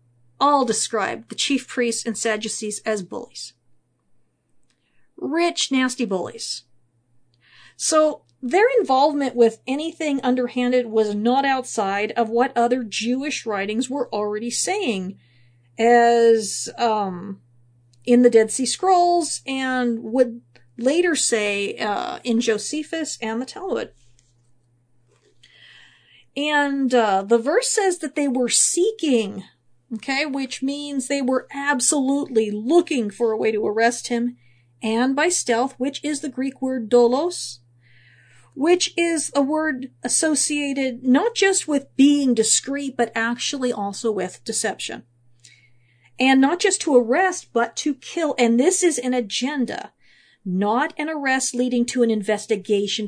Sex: female